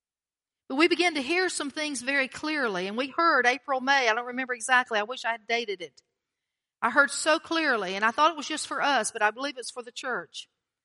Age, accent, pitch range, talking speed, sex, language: 40-59, American, 230-280 Hz, 240 wpm, female, English